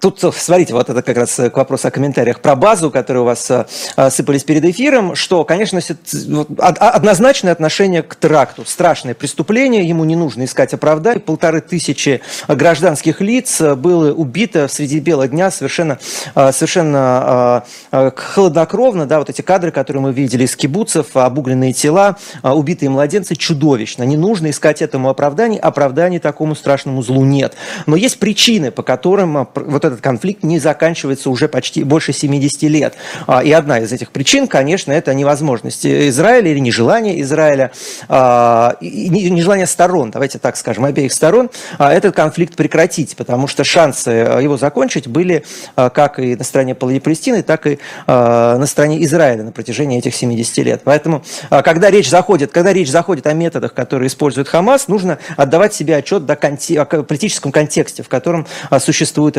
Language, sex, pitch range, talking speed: Russian, male, 135-170 Hz, 150 wpm